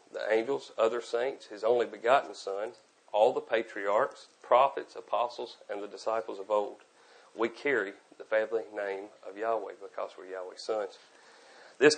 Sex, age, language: male, 40-59, English